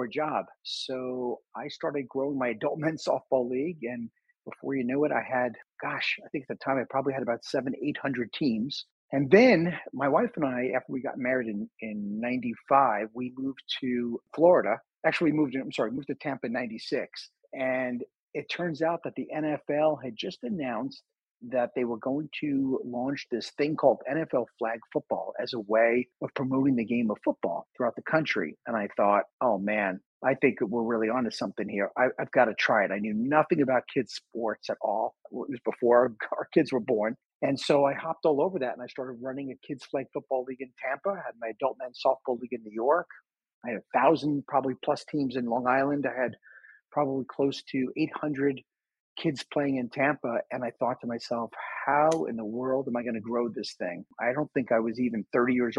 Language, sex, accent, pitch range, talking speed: English, male, American, 125-145 Hz, 215 wpm